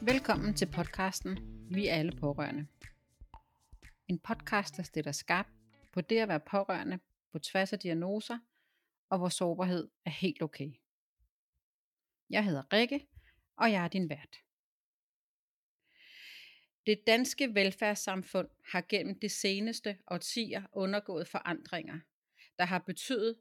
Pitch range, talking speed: 165-210 Hz, 125 wpm